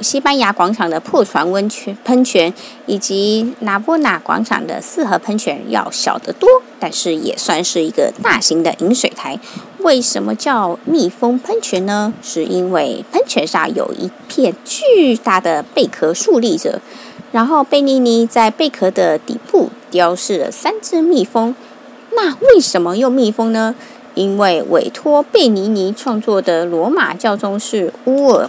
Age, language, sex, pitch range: 30-49, Chinese, female, 190-275 Hz